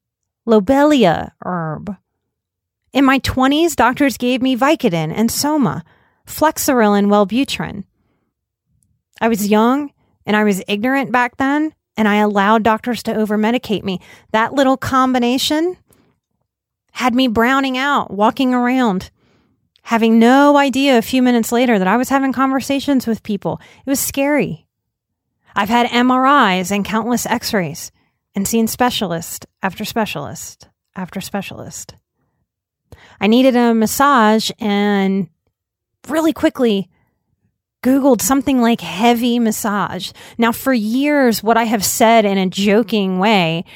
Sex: female